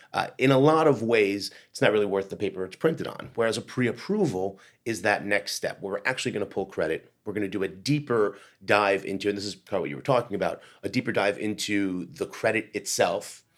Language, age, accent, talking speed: English, 30-49, American, 235 wpm